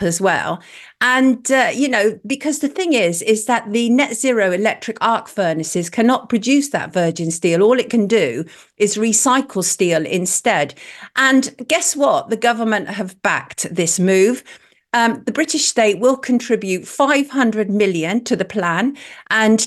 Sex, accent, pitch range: female, British, 190-250 Hz